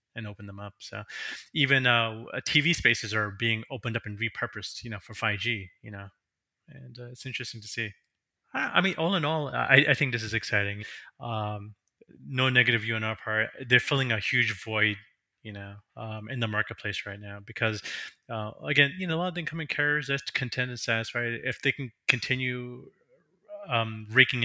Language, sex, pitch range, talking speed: English, male, 110-140 Hz, 195 wpm